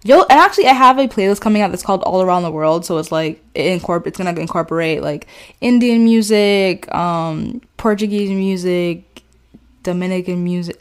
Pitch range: 165-195 Hz